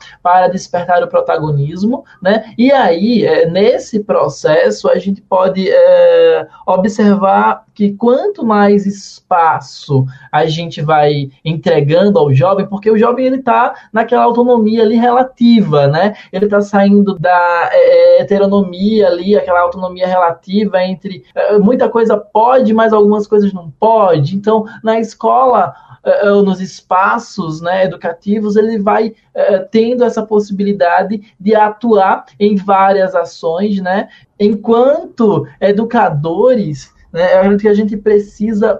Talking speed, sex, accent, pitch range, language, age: 120 wpm, male, Brazilian, 175-220 Hz, Portuguese, 20-39